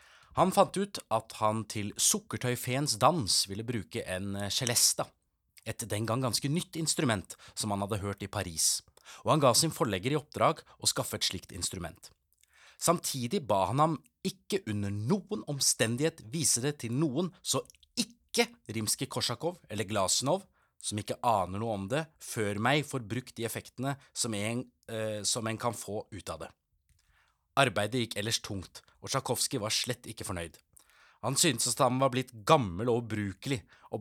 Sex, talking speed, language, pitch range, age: male, 160 wpm, English, 105-140 Hz, 30-49